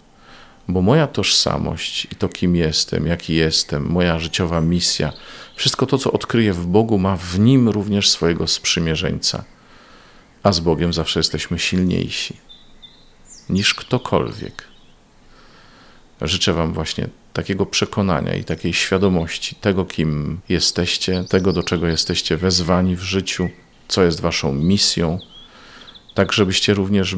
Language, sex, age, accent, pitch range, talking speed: Polish, male, 40-59, native, 80-95 Hz, 125 wpm